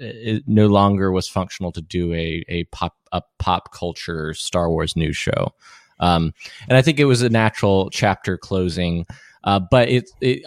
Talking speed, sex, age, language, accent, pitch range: 170 wpm, male, 20-39, English, American, 90-110 Hz